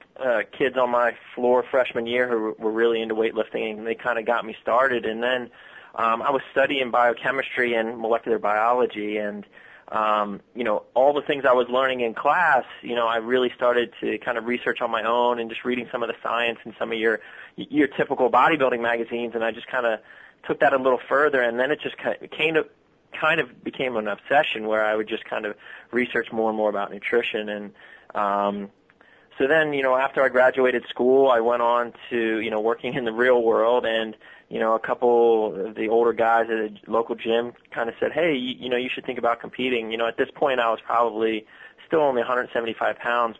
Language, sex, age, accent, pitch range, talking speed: English, male, 20-39, American, 110-125 Hz, 220 wpm